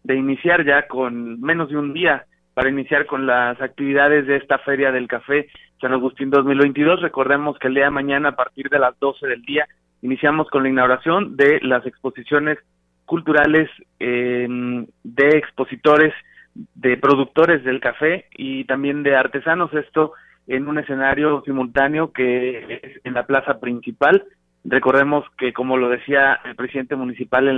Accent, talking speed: Mexican, 160 wpm